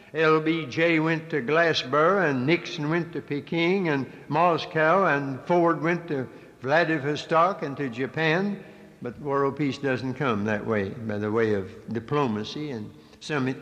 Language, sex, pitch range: English, male, 120-155 Hz